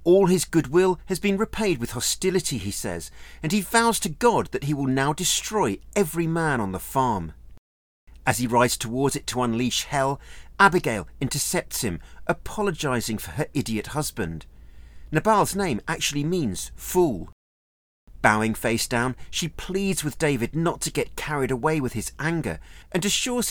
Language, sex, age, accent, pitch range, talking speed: English, male, 40-59, British, 115-180 Hz, 160 wpm